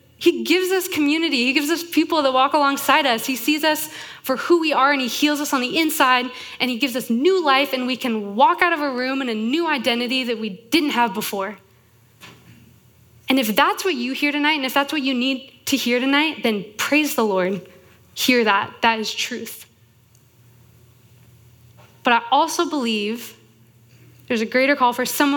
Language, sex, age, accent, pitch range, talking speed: English, female, 20-39, American, 185-275 Hz, 200 wpm